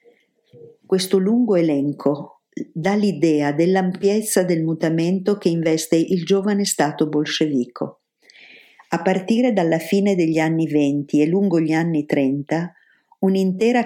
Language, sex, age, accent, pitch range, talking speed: Italian, female, 50-69, native, 160-200 Hz, 115 wpm